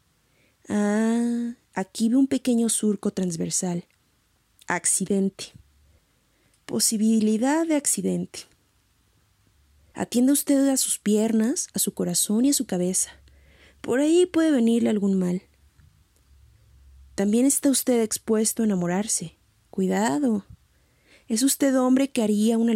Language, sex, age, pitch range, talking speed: Spanish, female, 30-49, 175-235 Hz, 110 wpm